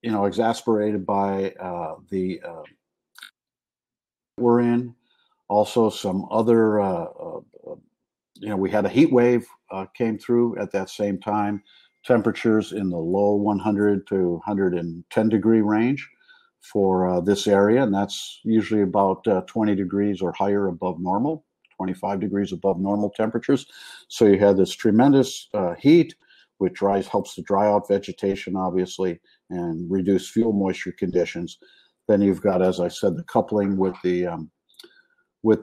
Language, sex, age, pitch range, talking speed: English, male, 50-69, 95-115 Hz, 150 wpm